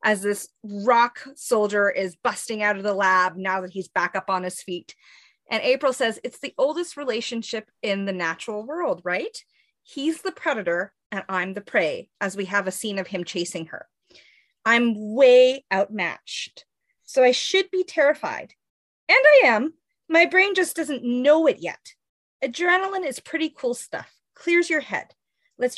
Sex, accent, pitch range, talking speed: female, American, 205-305 Hz, 170 wpm